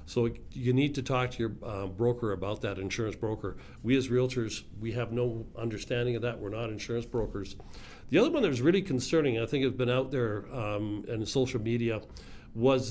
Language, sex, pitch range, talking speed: English, male, 115-130 Hz, 205 wpm